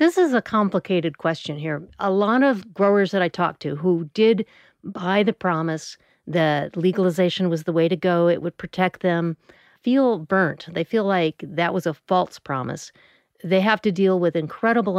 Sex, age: female, 50-69